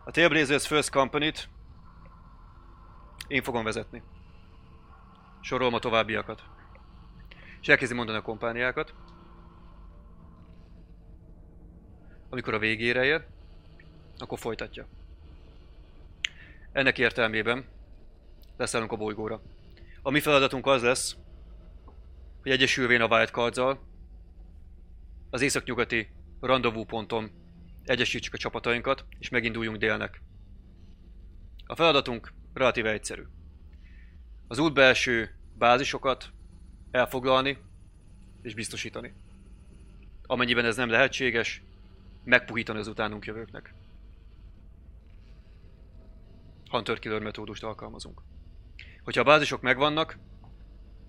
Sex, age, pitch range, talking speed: male, 30-49, 85-120 Hz, 85 wpm